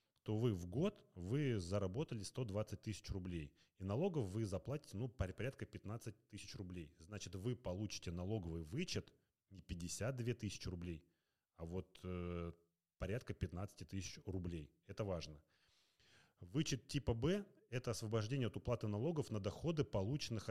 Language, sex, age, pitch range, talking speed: Russian, male, 30-49, 90-120 Hz, 140 wpm